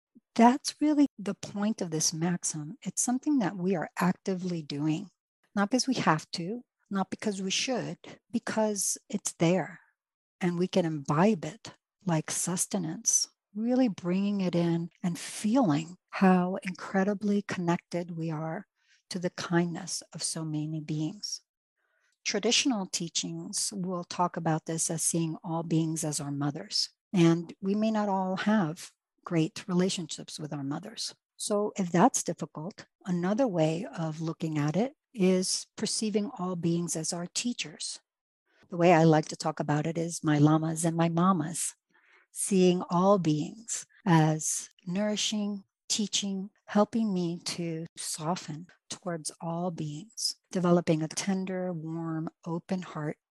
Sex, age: female, 60-79